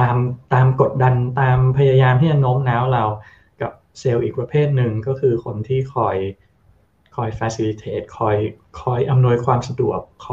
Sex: male